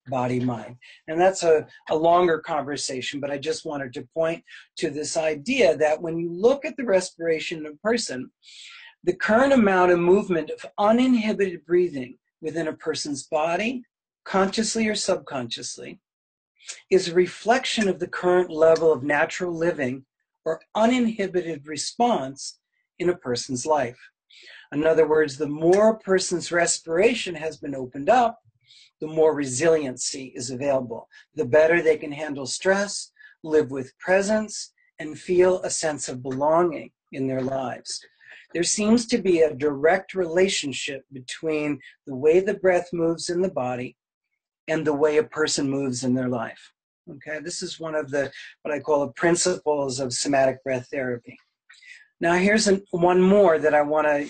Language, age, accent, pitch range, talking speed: English, 40-59, American, 145-185 Hz, 155 wpm